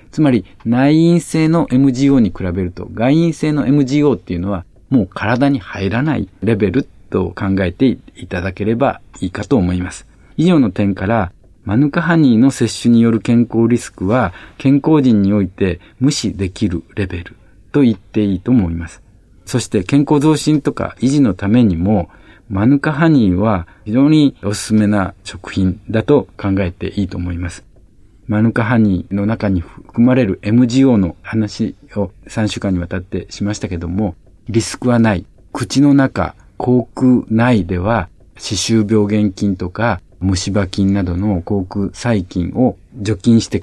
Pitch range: 95-125 Hz